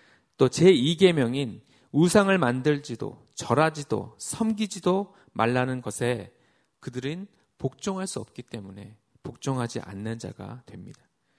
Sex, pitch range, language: male, 120-170 Hz, Korean